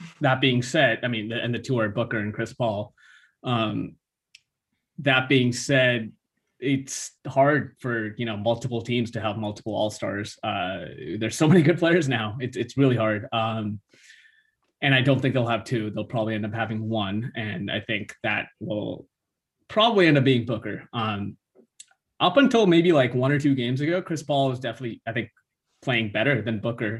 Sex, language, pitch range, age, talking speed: male, English, 110-135 Hz, 20-39, 180 wpm